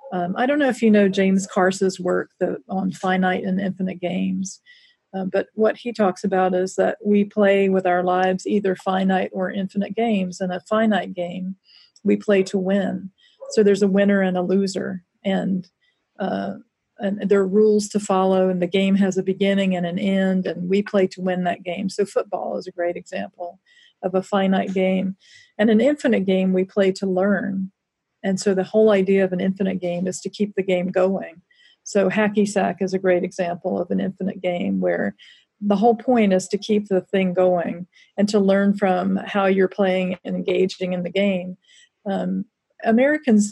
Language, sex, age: English, female, 40-59